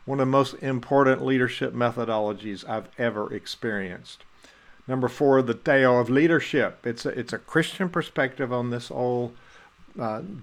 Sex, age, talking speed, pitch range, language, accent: male, 50-69, 145 wpm, 110-135 Hz, English, American